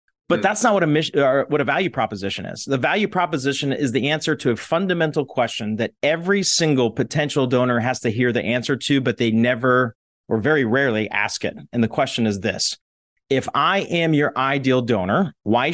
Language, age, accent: English, 30-49, American